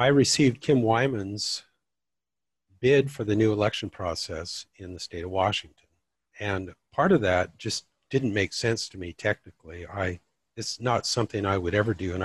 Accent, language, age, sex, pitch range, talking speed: American, English, 50-69, male, 90-120 Hz, 170 wpm